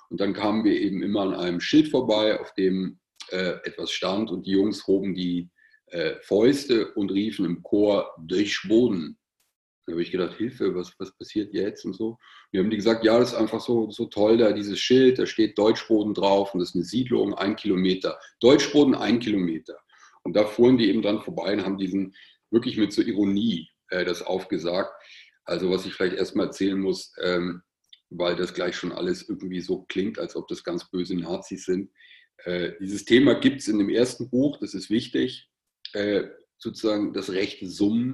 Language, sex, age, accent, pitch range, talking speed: German, male, 40-59, German, 95-120 Hz, 195 wpm